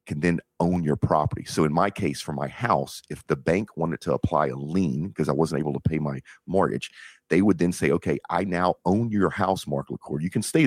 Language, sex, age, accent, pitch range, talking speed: English, male, 40-59, American, 75-95 Hz, 240 wpm